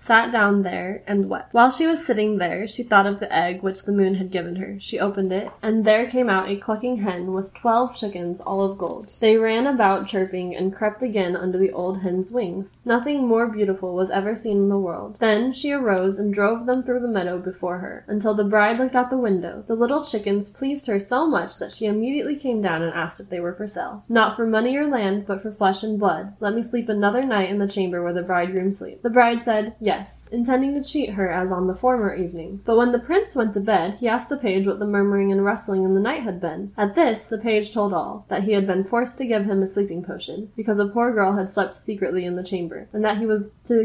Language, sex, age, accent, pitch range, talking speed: English, female, 10-29, American, 195-230 Hz, 250 wpm